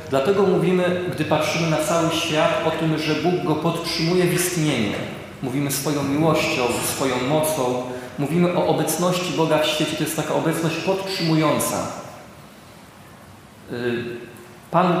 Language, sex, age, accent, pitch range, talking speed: Polish, male, 40-59, native, 145-165 Hz, 130 wpm